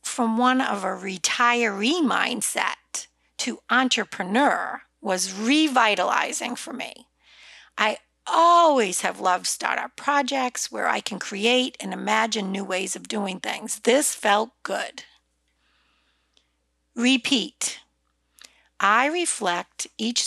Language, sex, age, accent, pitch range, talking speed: English, female, 50-69, American, 180-255 Hz, 105 wpm